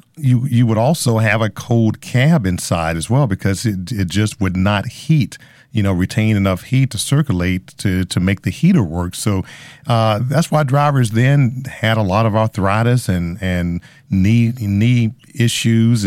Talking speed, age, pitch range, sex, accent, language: 175 wpm, 40-59, 95-125 Hz, male, American, English